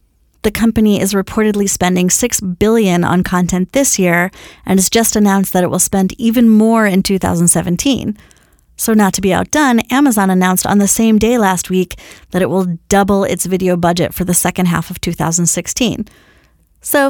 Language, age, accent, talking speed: English, 30-49, American, 175 wpm